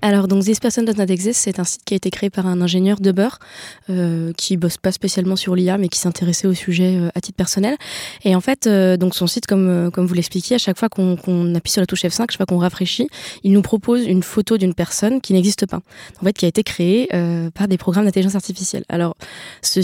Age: 20-39